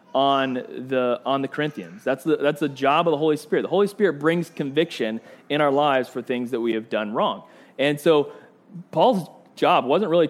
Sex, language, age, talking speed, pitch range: male, English, 30-49, 190 wpm, 140-190 Hz